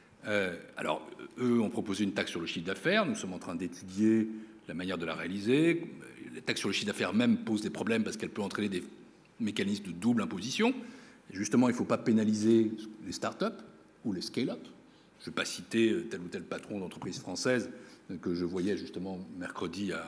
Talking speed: 195 wpm